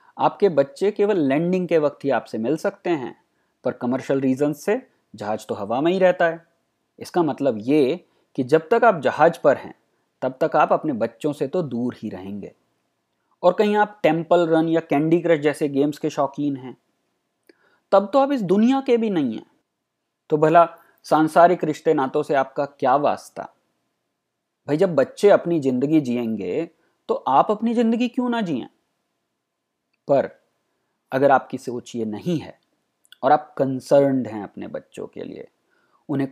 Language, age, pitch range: Hindi, 30-49, 135-185 Hz